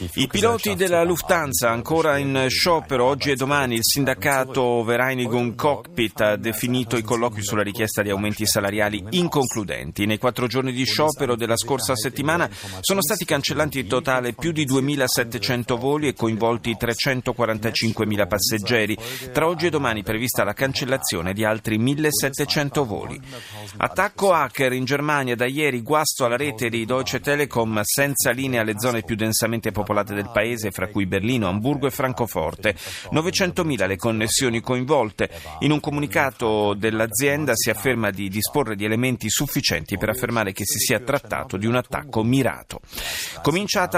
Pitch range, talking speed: 110-140 Hz, 150 wpm